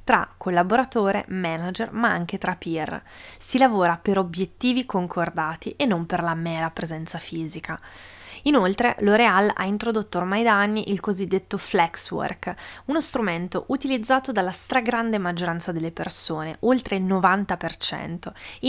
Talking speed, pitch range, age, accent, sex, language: 130 wpm, 180-245 Hz, 20-39, native, female, Italian